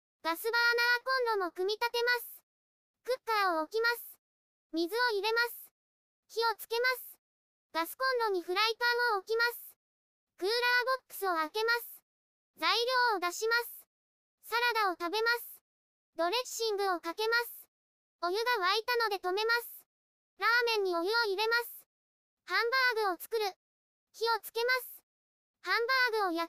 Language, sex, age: Japanese, male, 20-39